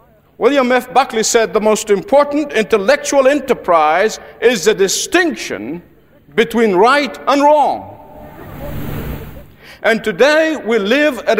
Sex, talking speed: male, 110 wpm